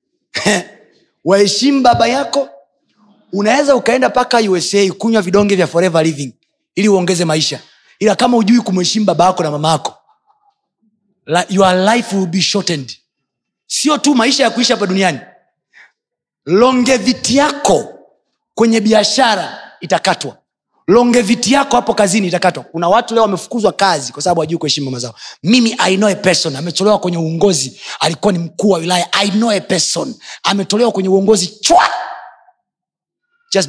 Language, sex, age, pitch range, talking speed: Swahili, male, 30-49, 170-235 Hz, 140 wpm